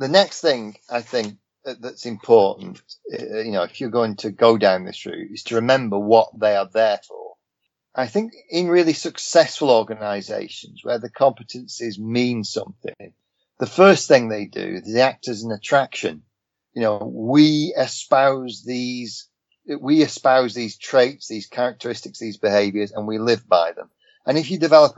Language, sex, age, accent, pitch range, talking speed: English, male, 40-59, British, 105-135 Hz, 160 wpm